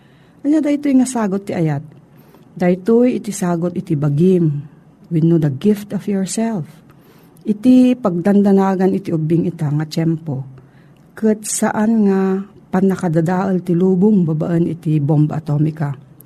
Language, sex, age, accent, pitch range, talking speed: Filipino, female, 50-69, native, 165-215 Hz, 120 wpm